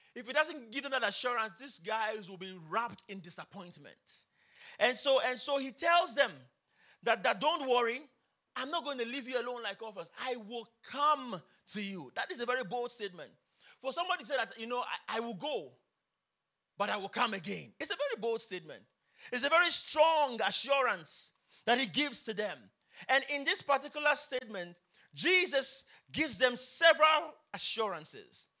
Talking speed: 180 wpm